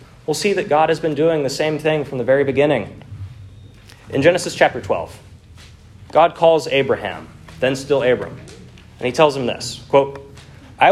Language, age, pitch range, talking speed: English, 30-49, 110-170 Hz, 170 wpm